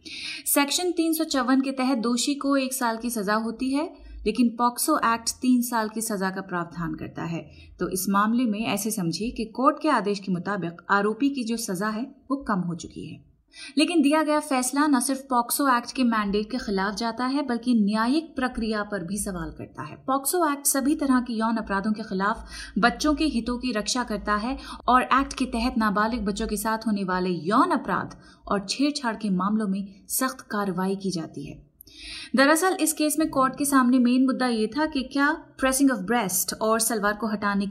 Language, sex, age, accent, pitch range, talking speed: Hindi, female, 30-49, native, 205-265 Hz, 125 wpm